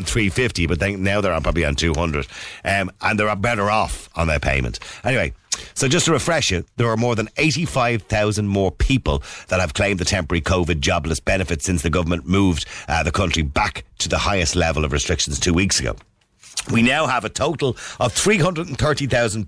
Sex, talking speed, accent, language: male, 185 wpm, Irish, English